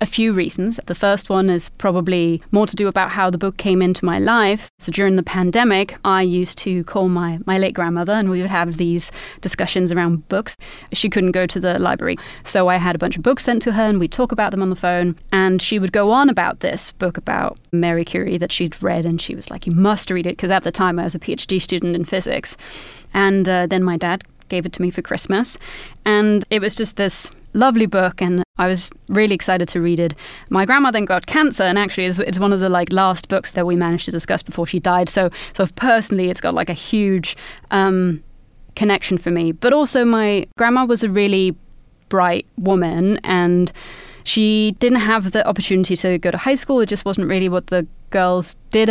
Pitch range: 180-205 Hz